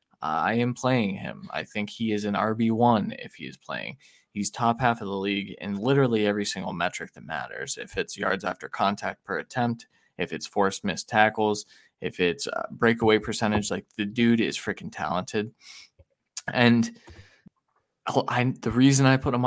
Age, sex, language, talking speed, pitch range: 20-39, male, English, 170 wpm, 105-120 Hz